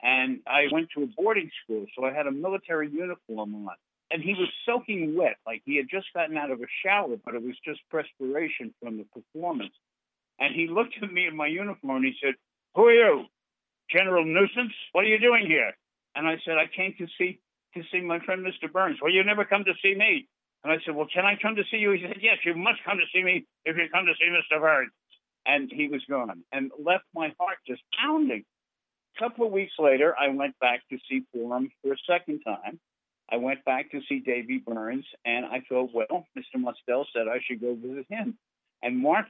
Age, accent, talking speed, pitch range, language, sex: 60-79, American, 225 wpm, 135-185 Hz, English, male